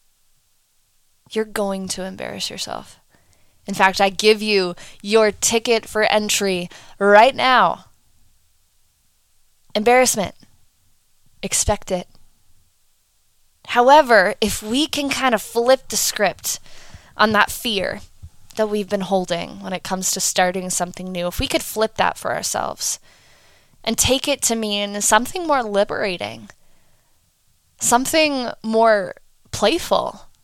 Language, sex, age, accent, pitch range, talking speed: English, female, 20-39, American, 185-275 Hz, 120 wpm